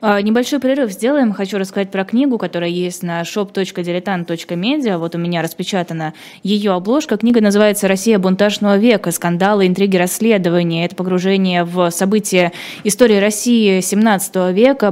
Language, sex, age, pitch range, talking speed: Russian, female, 20-39, 180-215 Hz, 135 wpm